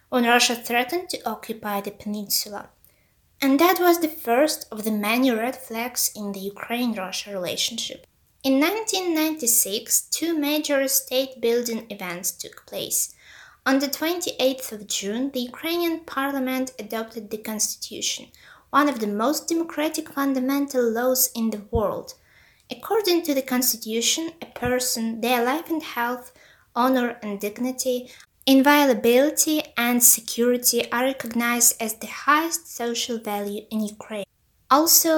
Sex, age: female, 20-39